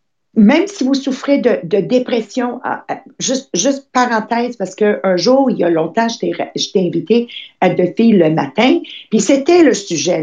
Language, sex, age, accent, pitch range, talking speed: English, female, 50-69, Canadian, 195-255 Hz, 180 wpm